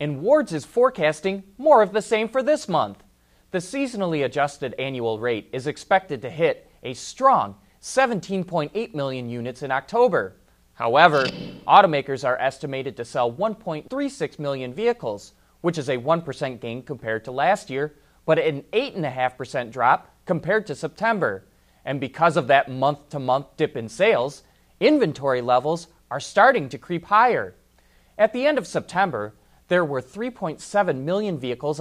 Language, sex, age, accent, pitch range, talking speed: English, male, 30-49, American, 135-205 Hz, 145 wpm